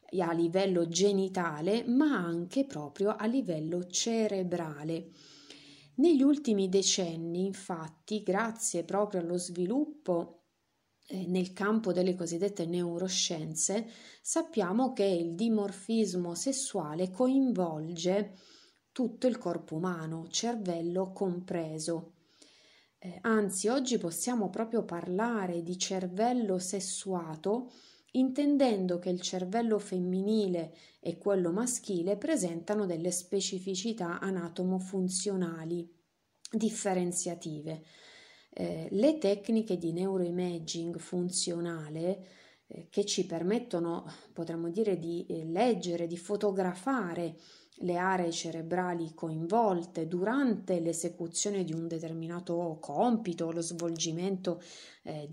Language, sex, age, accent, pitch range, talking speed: Italian, female, 30-49, native, 170-210 Hz, 95 wpm